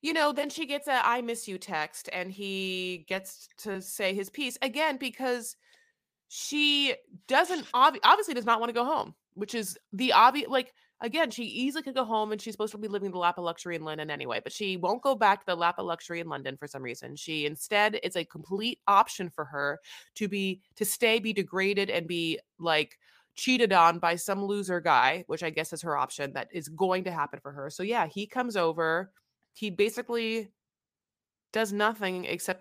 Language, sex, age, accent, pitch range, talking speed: English, female, 30-49, American, 175-270 Hz, 210 wpm